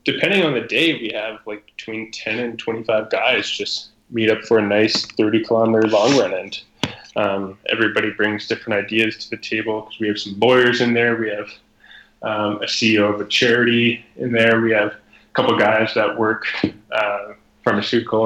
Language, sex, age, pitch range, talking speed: English, male, 10-29, 105-115 Hz, 185 wpm